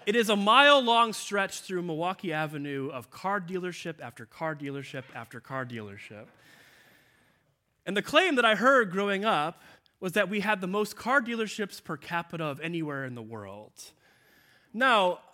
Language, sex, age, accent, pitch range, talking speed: English, male, 30-49, American, 130-190 Hz, 160 wpm